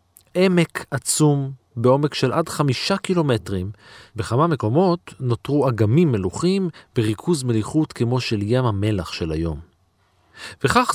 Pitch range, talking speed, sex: 100-145 Hz, 115 wpm, male